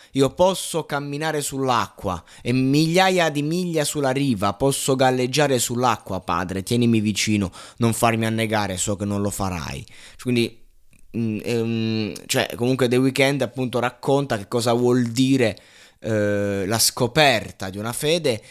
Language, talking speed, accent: Italian, 135 wpm, native